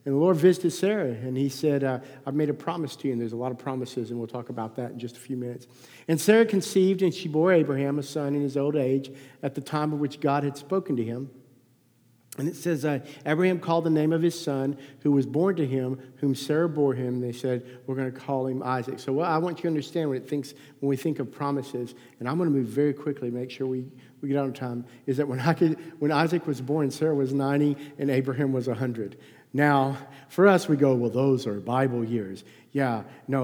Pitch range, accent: 130-155 Hz, American